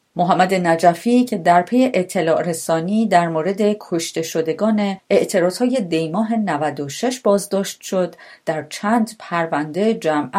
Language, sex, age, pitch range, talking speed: Persian, female, 40-59, 155-220 Hz, 115 wpm